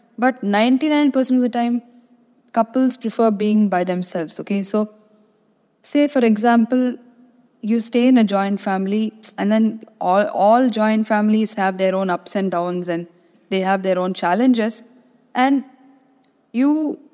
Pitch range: 205-255 Hz